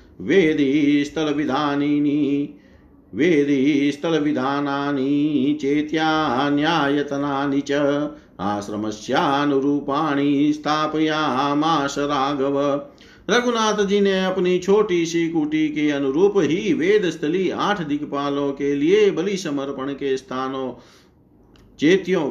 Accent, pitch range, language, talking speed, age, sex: native, 140-170 Hz, Hindi, 80 wpm, 50-69, male